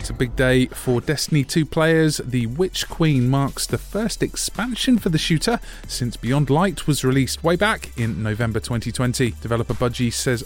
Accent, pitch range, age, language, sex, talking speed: British, 110-160 Hz, 30-49, English, male, 180 wpm